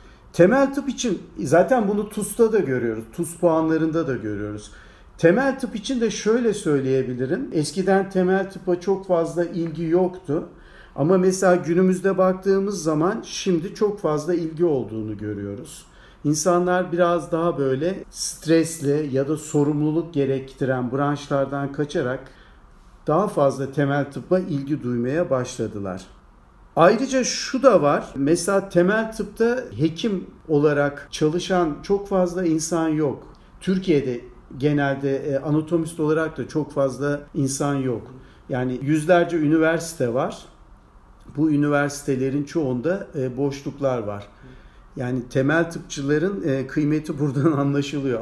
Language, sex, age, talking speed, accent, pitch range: Turkish, male, 50-69, 115 wpm, native, 135-180 Hz